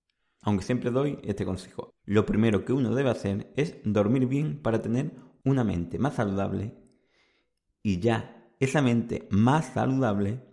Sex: male